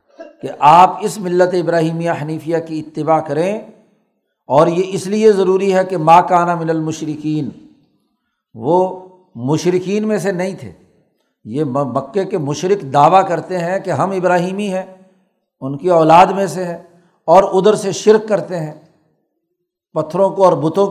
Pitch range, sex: 165-195 Hz, male